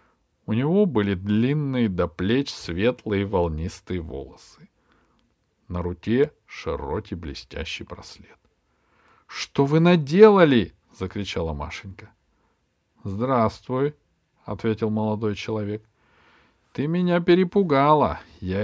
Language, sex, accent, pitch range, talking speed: Russian, male, native, 105-165 Hz, 85 wpm